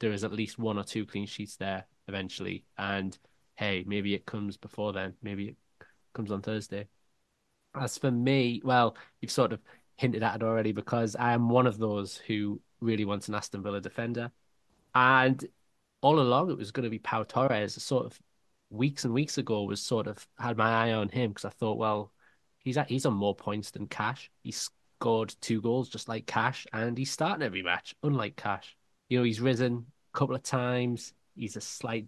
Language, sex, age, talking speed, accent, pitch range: English, male, 20-39, 200 wpm, British, 105-120 Hz